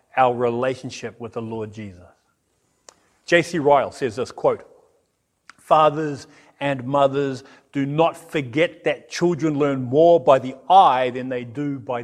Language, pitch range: English, 125-165 Hz